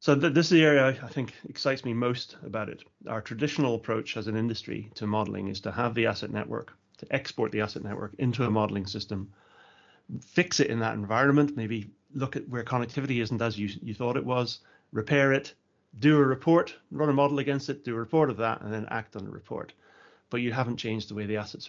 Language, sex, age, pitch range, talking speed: English, male, 30-49, 105-130 Hz, 225 wpm